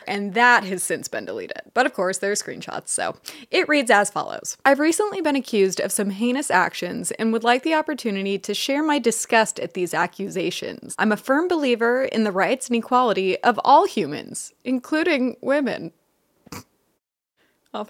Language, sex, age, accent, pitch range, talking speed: English, female, 20-39, American, 205-280 Hz, 175 wpm